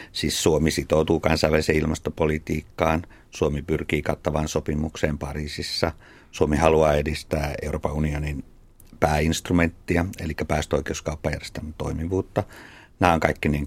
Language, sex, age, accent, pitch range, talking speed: Finnish, male, 50-69, native, 75-90 Hz, 100 wpm